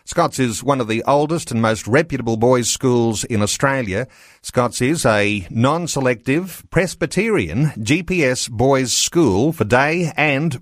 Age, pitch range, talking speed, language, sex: 50-69, 115-150 Hz, 135 wpm, English, male